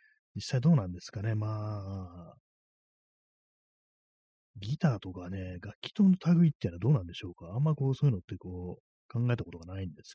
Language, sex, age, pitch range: Japanese, male, 30-49, 90-120 Hz